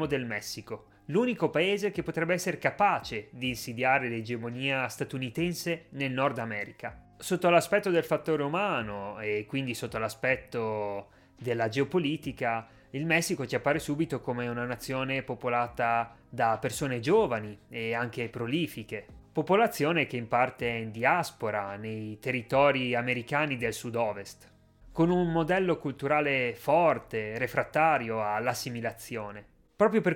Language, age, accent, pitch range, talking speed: Italian, 30-49, native, 115-155 Hz, 125 wpm